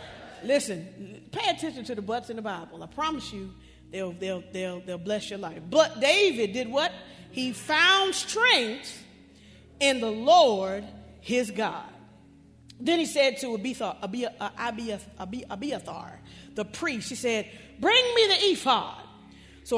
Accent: American